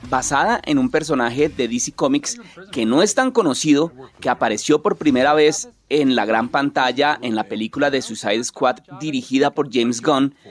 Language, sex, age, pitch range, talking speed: Spanish, male, 30-49, 125-160 Hz, 175 wpm